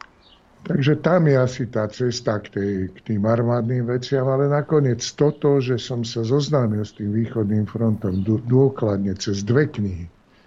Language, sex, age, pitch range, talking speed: Slovak, male, 60-79, 105-125 Hz, 145 wpm